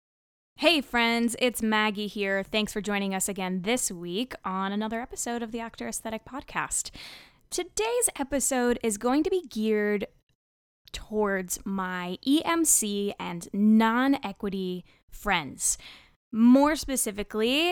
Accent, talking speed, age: American, 120 wpm, 10-29